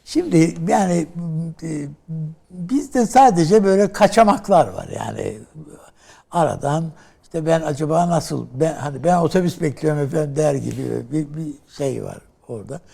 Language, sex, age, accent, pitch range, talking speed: Turkish, male, 60-79, native, 120-165 Hz, 120 wpm